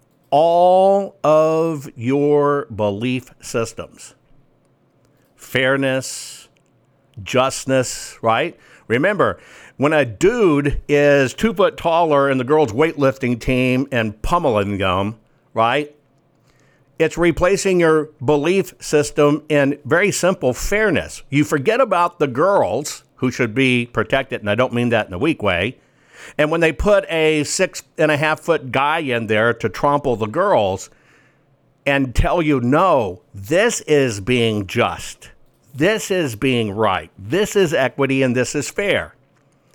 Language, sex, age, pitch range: English, male, 60-79, 120-155 Hz